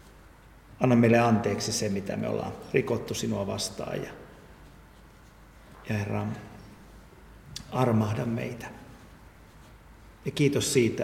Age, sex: 50-69, male